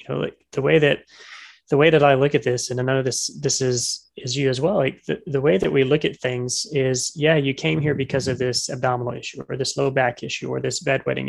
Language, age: English, 20-39